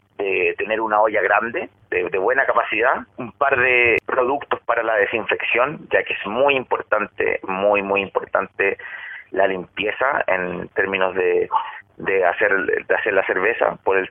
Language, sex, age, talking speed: Spanish, male, 30-49, 155 wpm